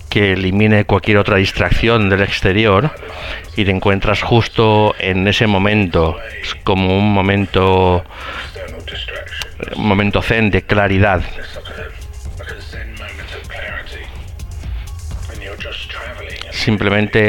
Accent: Spanish